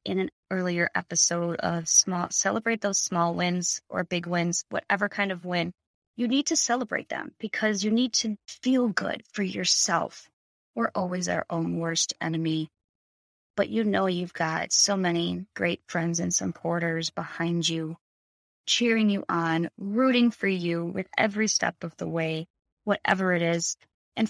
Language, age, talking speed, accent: English, 20-39, 160 wpm, American